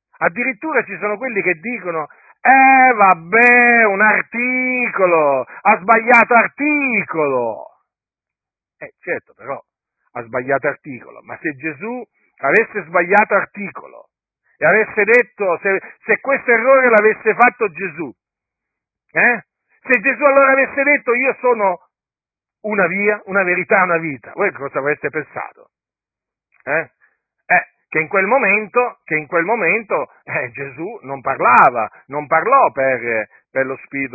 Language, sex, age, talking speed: Italian, male, 50-69, 125 wpm